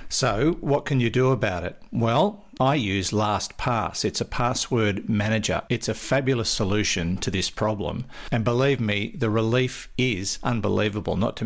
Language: English